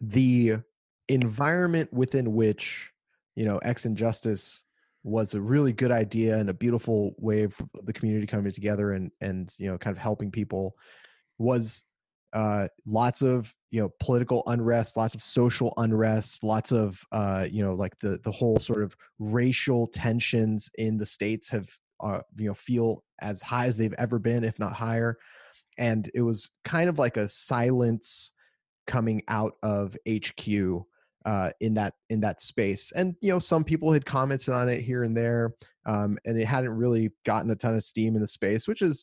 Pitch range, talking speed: 105-120 Hz, 180 wpm